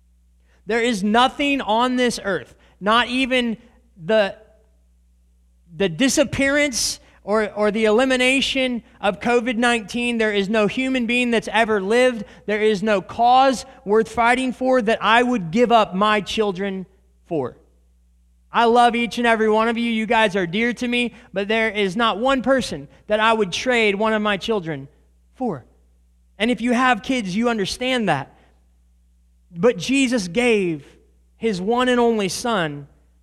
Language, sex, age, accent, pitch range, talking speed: English, male, 30-49, American, 140-230 Hz, 155 wpm